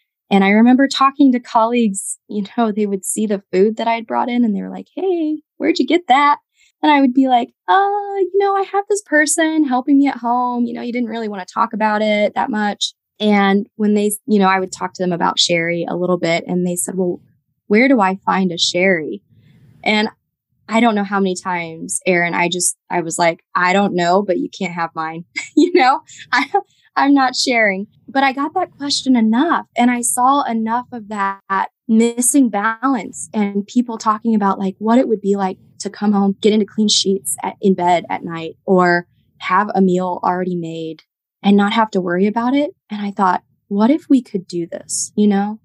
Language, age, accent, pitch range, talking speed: English, 20-39, American, 185-245 Hz, 215 wpm